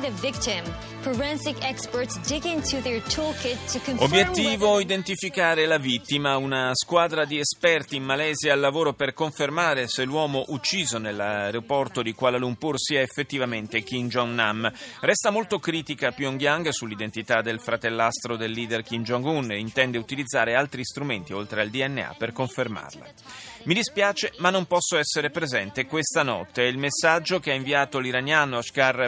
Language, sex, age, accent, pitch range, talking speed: Italian, male, 30-49, native, 120-170 Hz, 130 wpm